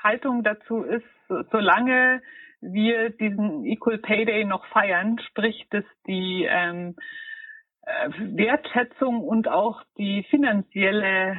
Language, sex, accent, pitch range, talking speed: German, female, German, 190-235 Hz, 110 wpm